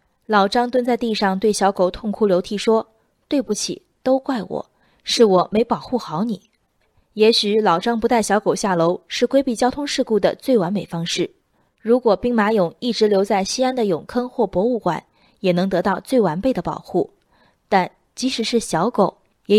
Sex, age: female, 20-39